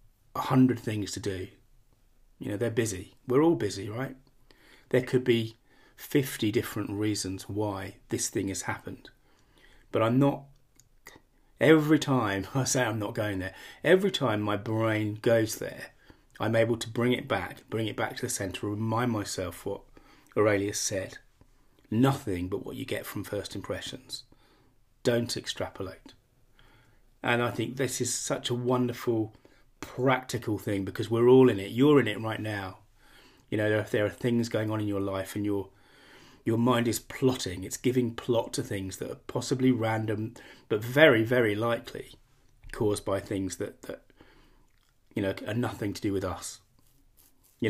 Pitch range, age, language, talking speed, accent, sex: 100-125 Hz, 30-49, English, 165 wpm, British, male